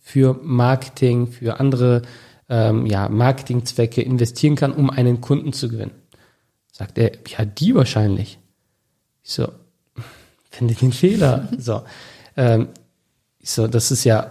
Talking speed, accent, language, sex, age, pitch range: 135 wpm, German, German, male, 40-59, 125-155 Hz